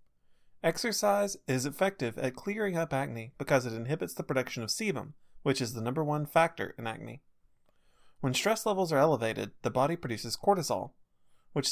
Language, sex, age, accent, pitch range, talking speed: English, male, 30-49, American, 120-175 Hz, 165 wpm